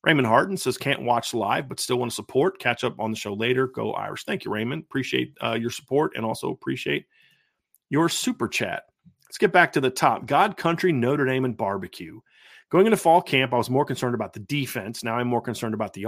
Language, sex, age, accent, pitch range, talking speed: English, male, 40-59, American, 115-140 Hz, 230 wpm